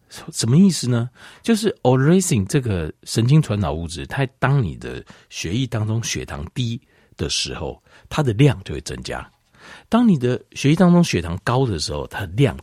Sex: male